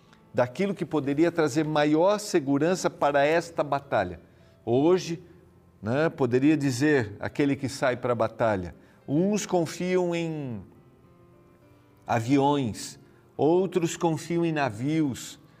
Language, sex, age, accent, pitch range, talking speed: Portuguese, male, 50-69, Brazilian, 120-160 Hz, 105 wpm